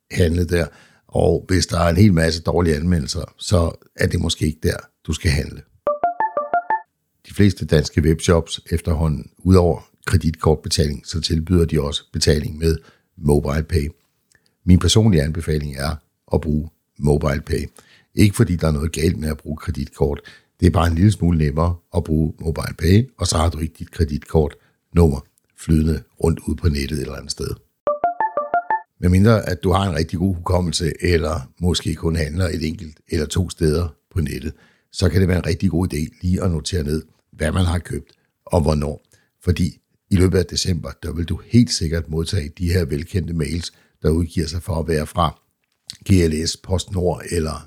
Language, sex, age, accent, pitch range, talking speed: Danish, male, 60-79, native, 80-95 Hz, 175 wpm